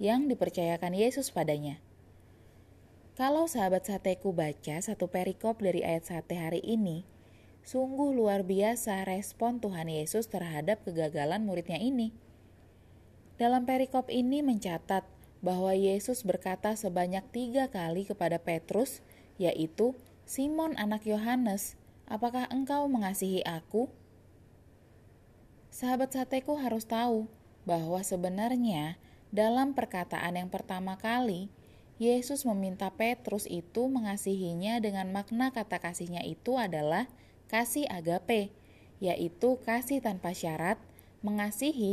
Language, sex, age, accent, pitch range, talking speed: Indonesian, female, 20-39, native, 170-235 Hz, 105 wpm